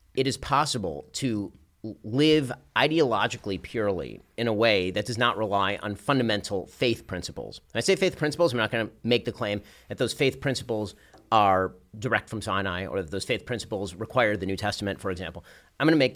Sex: male